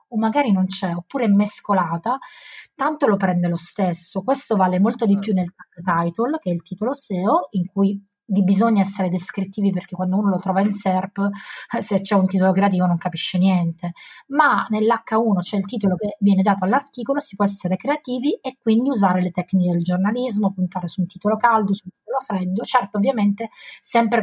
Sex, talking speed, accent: female, 190 wpm, native